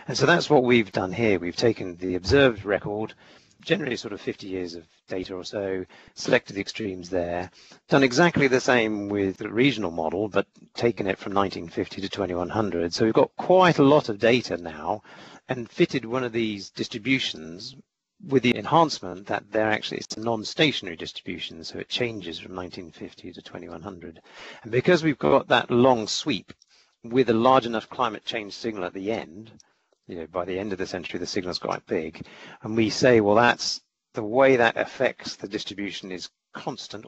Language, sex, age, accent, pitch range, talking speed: English, male, 40-59, British, 95-125 Hz, 185 wpm